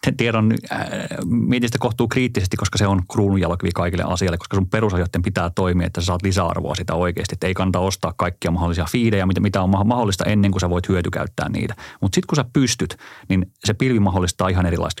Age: 30-49